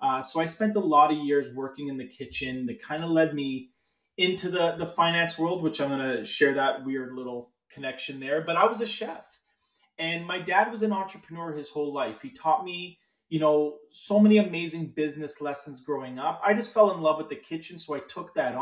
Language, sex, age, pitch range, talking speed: English, male, 30-49, 150-205 Hz, 225 wpm